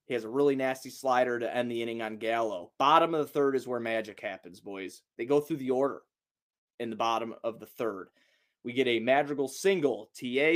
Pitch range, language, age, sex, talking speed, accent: 115-150 Hz, English, 20-39, male, 215 wpm, American